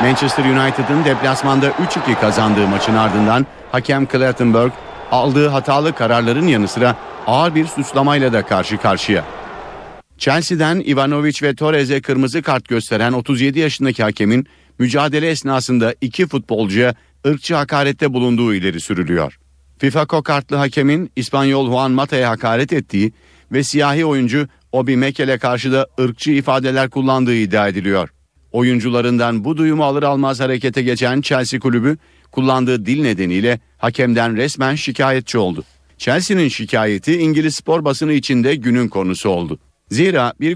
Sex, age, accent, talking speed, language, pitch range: male, 50-69, native, 125 wpm, Turkish, 120-140 Hz